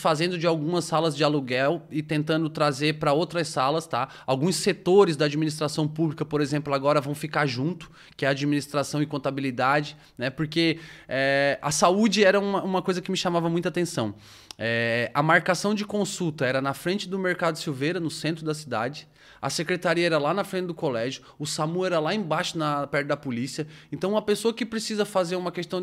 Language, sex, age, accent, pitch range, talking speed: Portuguese, male, 20-39, Brazilian, 150-215 Hz, 195 wpm